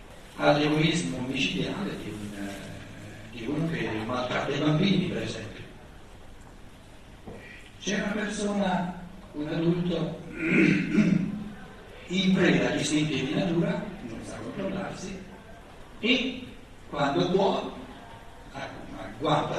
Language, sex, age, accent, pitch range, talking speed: Italian, male, 60-79, native, 125-180 Hz, 95 wpm